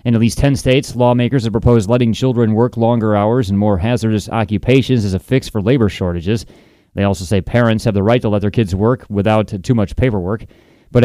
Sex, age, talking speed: male, 30-49, 215 wpm